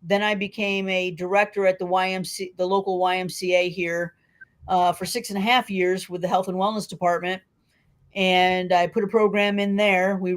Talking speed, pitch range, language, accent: 190 wpm, 180-210 Hz, English, American